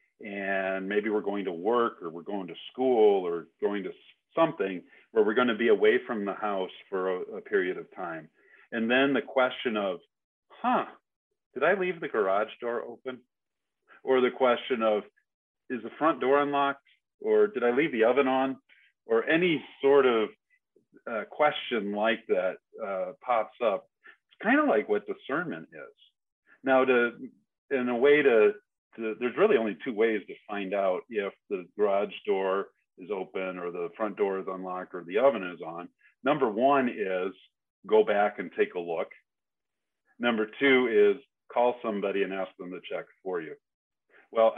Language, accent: English, American